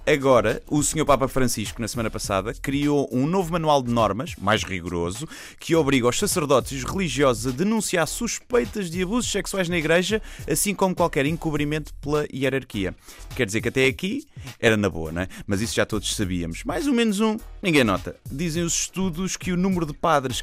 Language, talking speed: Portuguese, 190 wpm